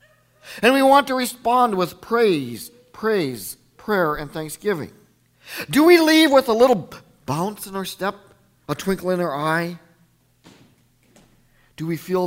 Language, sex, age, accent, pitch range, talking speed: English, male, 50-69, American, 145-235 Hz, 140 wpm